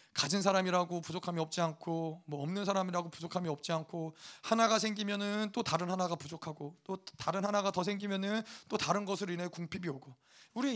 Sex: male